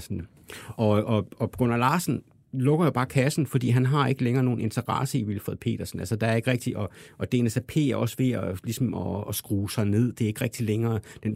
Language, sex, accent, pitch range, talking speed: Danish, male, native, 105-130 Hz, 225 wpm